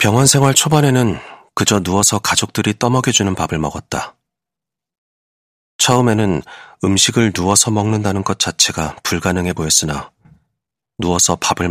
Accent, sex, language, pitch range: native, male, Korean, 85-110 Hz